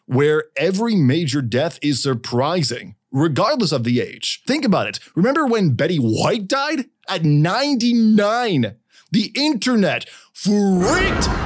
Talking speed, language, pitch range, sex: 120 wpm, English, 135-200 Hz, male